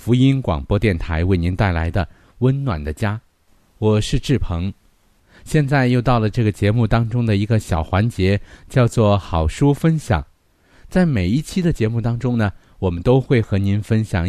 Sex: male